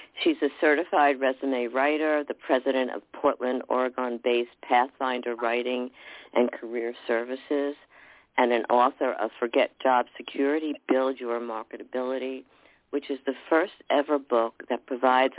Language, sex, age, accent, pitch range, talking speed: English, female, 50-69, American, 120-150 Hz, 130 wpm